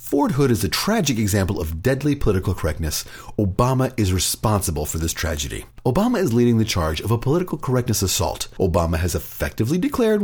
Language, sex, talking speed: English, male, 175 wpm